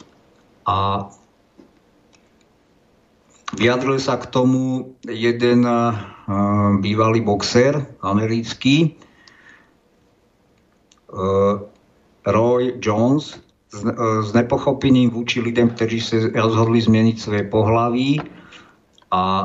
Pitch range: 105-120 Hz